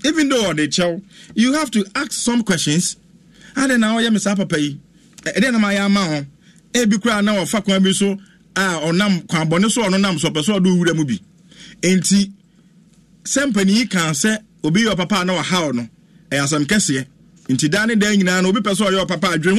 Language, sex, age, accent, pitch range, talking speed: English, male, 50-69, Nigerian, 160-195 Hz, 200 wpm